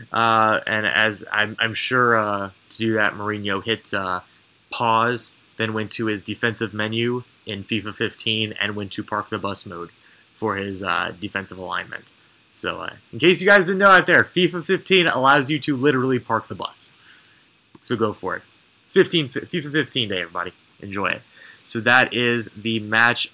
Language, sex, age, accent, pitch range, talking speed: English, male, 20-39, American, 105-125 Hz, 180 wpm